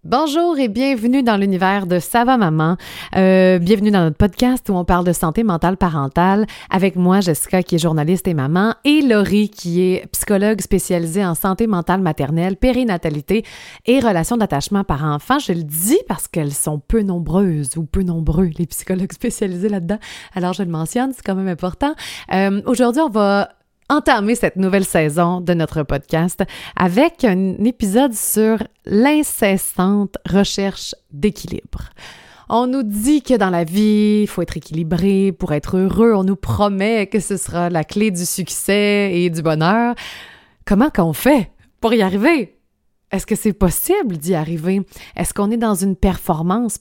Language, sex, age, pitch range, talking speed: French, female, 30-49, 175-220 Hz, 170 wpm